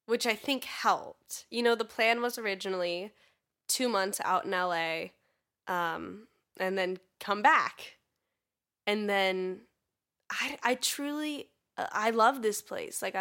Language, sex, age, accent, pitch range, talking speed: English, female, 10-29, American, 185-225 Hz, 140 wpm